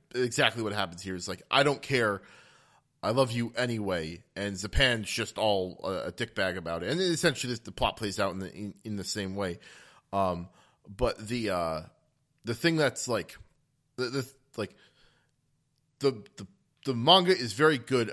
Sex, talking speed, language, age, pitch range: male, 185 wpm, English, 30-49, 100-135 Hz